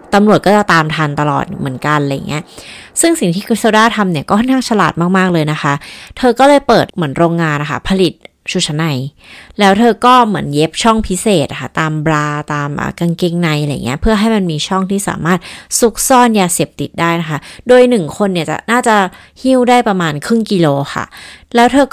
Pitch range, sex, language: 165-225 Hz, female, Thai